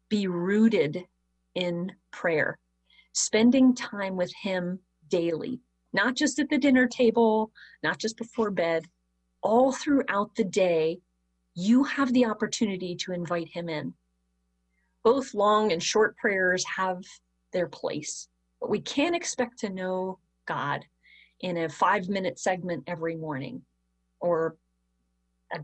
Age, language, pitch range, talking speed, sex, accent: 30-49, English, 160-215 Hz, 130 wpm, female, American